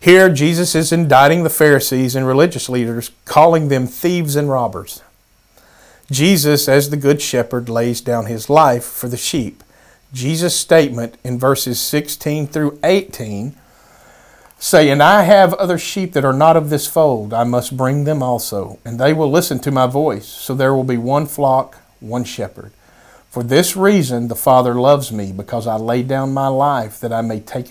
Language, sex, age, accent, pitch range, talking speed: English, male, 40-59, American, 120-150 Hz, 175 wpm